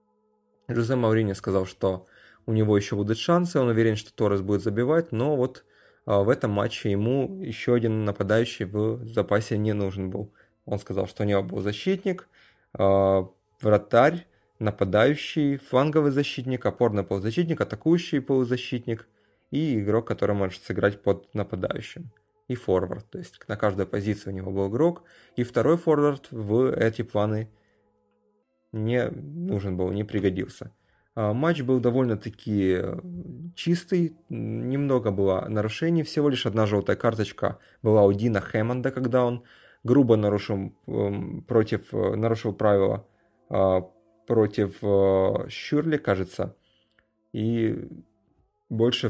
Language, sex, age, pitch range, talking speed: Russian, male, 20-39, 100-130 Hz, 125 wpm